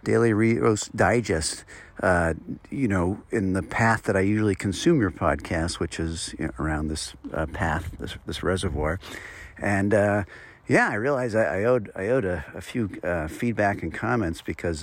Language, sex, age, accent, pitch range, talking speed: English, male, 50-69, American, 90-115 Hz, 180 wpm